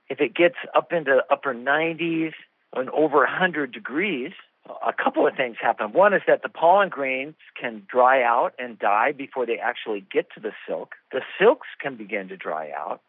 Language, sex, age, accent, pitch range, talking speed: English, male, 50-69, American, 140-200 Hz, 195 wpm